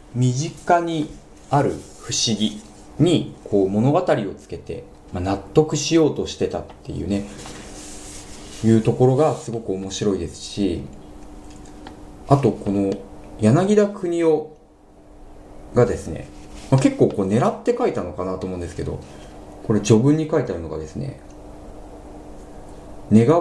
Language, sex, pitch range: Japanese, male, 75-125 Hz